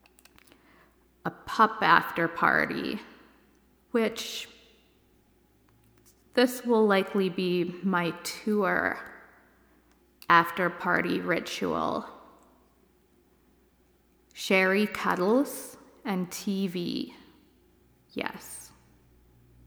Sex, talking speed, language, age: female, 60 wpm, English, 20-39